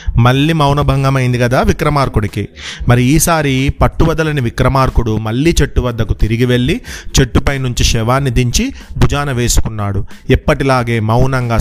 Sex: male